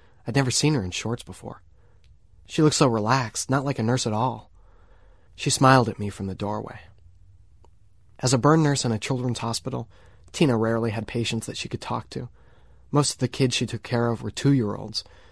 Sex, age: male, 20-39